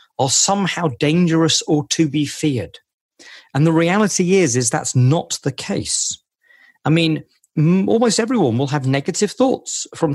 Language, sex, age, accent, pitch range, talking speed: English, male, 40-59, British, 140-200 Hz, 150 wpm